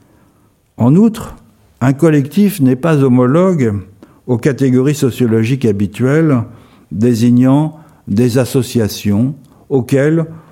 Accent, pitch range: French, 110-140 Hz